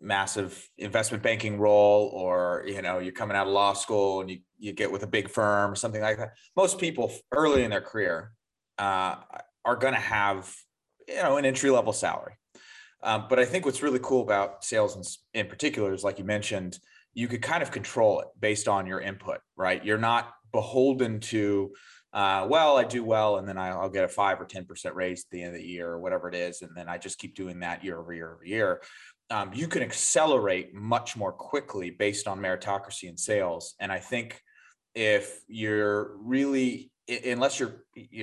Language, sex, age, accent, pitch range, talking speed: English, male, 30-49, American, 95-120 Hz, 200 wpm